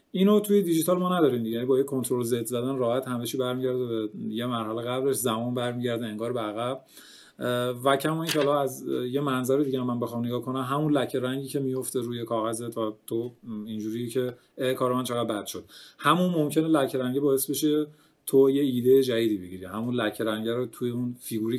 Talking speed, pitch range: 185 wpm, 110-135 Hz